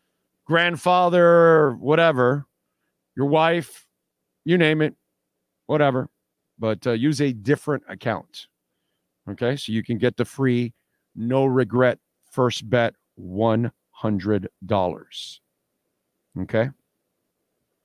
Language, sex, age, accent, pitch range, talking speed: English, male, 50-69, American, 115-150 Hz, 90 wpm